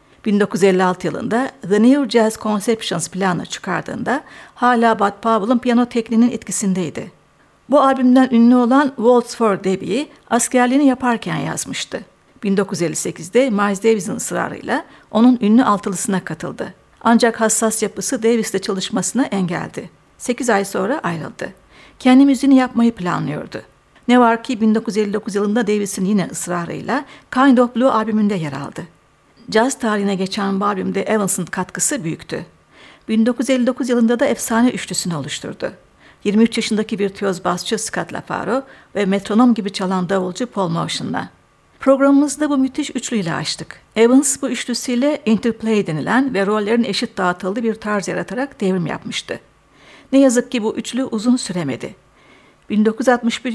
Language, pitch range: Turkish, 195-245 Hz